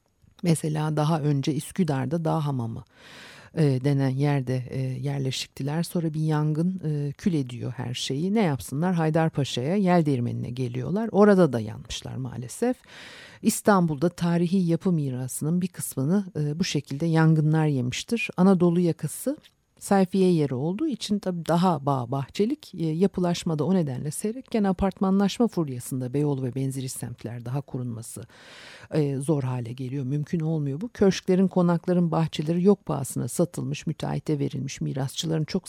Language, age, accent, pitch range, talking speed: Turkish, 50-69, native, 135-180 Hz, 130 wpm